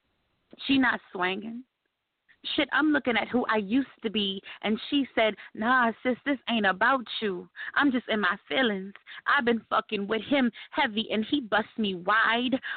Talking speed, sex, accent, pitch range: 175 wpm, female, American, 200-255 Hz